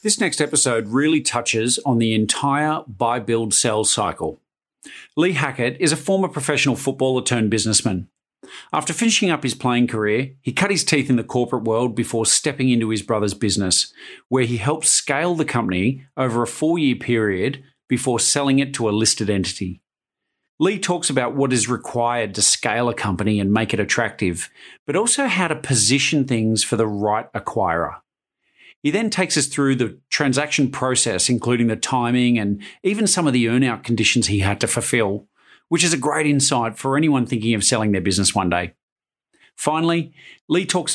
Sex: male